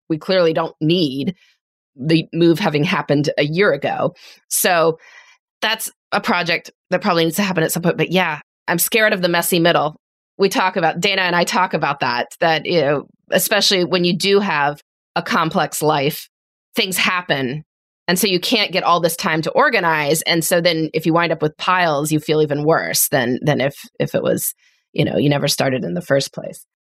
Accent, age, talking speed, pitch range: American, 20-39, 205 wpm, 160-215 Hz